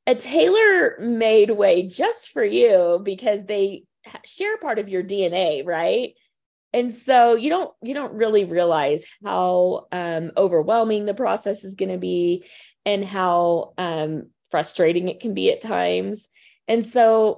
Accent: American